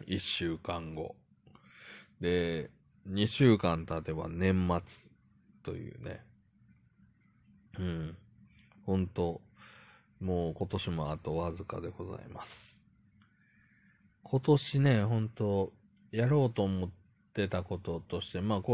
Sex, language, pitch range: male, Japanese, 85-105 Hz